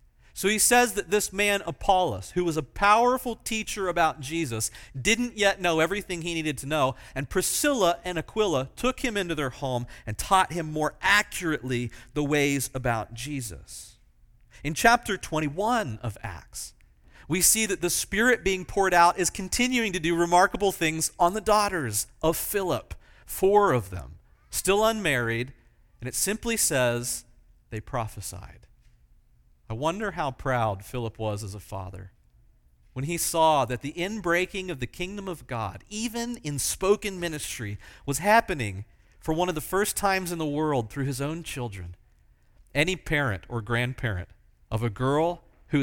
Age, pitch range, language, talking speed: 40-59, 115-180 Hz, English, 160 wpm